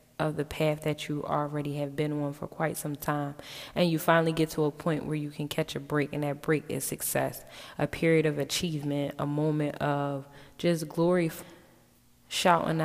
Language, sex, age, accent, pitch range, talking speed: English, female, 10-29, American, 150-165 Hz, 190 wpm